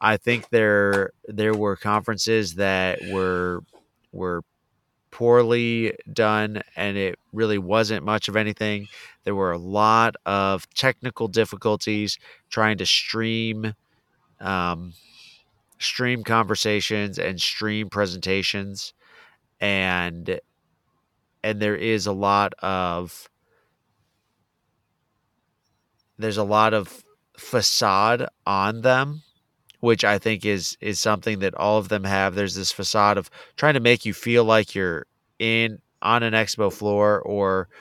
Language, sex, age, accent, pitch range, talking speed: English, male, 30-49, American, 100-110 Hz, 120 wpm